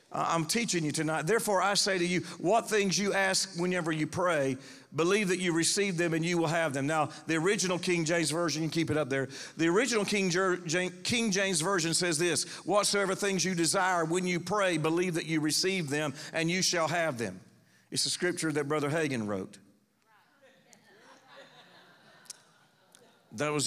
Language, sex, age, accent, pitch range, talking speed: English, male, 50-69, American, 150-190 Hz, 185 wpm